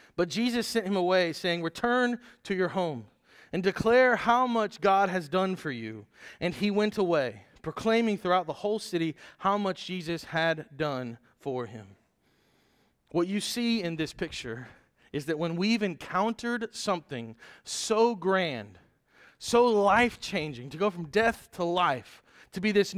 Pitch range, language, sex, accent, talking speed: 135-200 Hz, English, male, American, 160 wpm